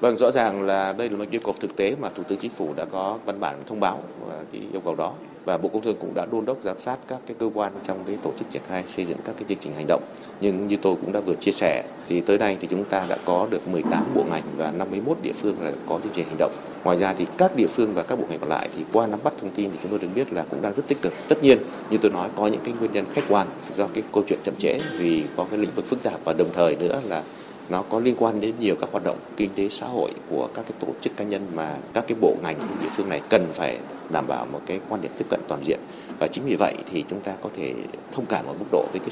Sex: male